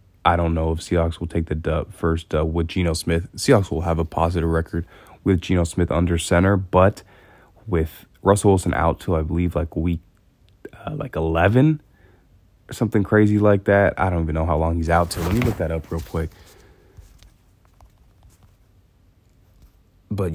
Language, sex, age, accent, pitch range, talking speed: English, male, 20-39, American, 85-95 Hz, 175 wpm